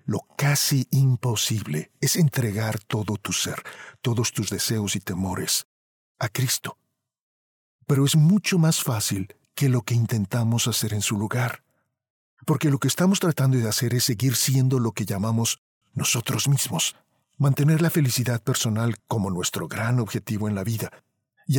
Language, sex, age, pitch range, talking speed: Spanish, male, 50-69, 105-135 Hz, 155 wpm